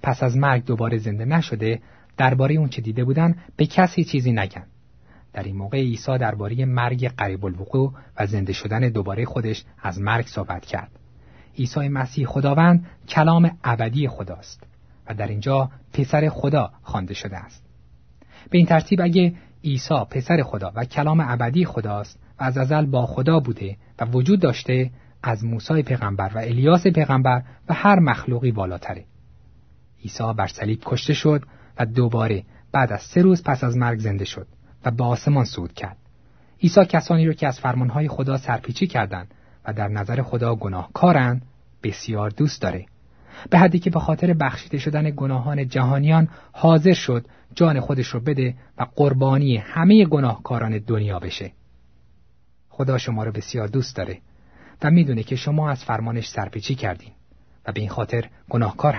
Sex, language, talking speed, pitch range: male, Persian, 155 wpm, 105-145 Hz